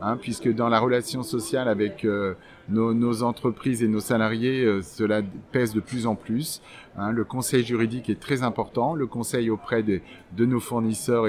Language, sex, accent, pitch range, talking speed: French, male, French, 110-130 Hz, 185 wpm